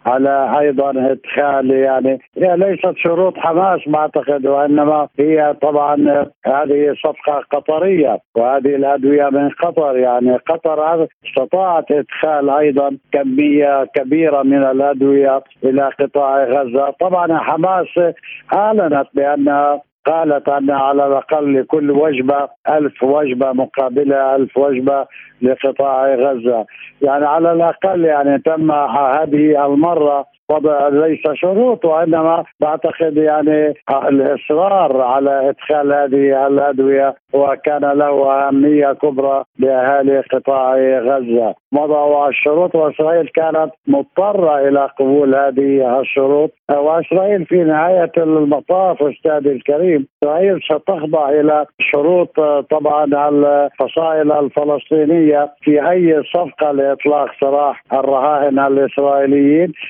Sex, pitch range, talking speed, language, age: male, 140-155 Hz, 105 wpm, Arabic, 60-79